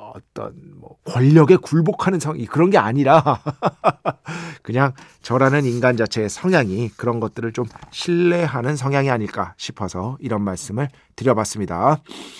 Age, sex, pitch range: 40-59, male, 110-165 Hz